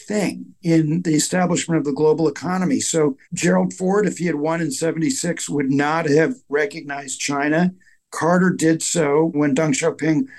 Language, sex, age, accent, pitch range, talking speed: English, male, 60-79, American, 145-175 Hz, 160 wpm